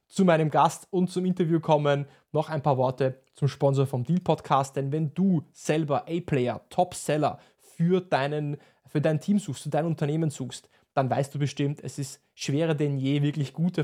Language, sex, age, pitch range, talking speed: German, male, 20-39, 140-165 Hz, 185 wpm